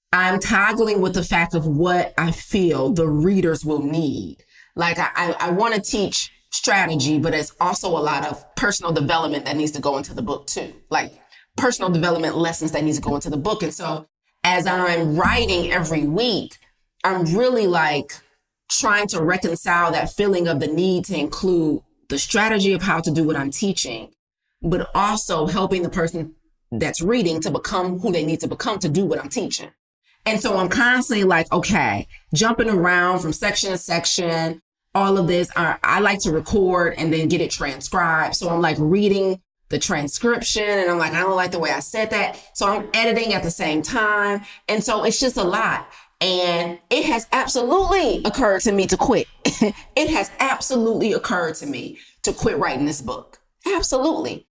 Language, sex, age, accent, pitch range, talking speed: English, female, 30-49, American, 165-210 Hz, 190 wpm